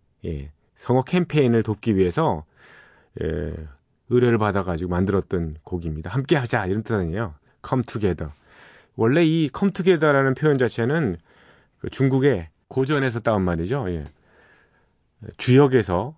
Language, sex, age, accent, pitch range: Korean, male, 40-59, native, 95-140 Hz